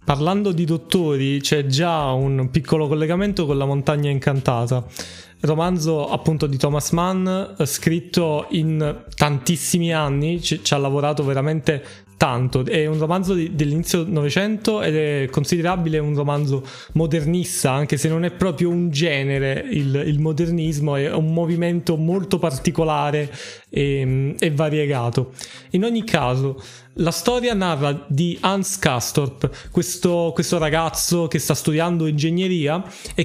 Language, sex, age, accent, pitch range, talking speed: Italian, male, 20-39, native, 145-180 Hz, 135 wpm